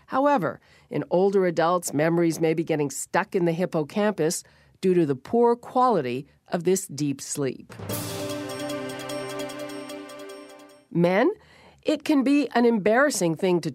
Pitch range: 155-195 Hz